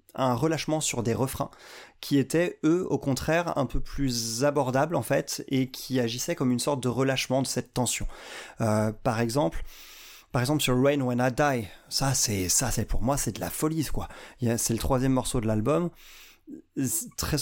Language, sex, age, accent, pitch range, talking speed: French, male, 30-49, French, 120-150 Hz, 190 wpm